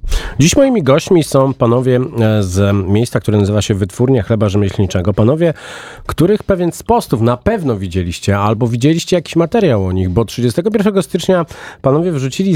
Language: Polish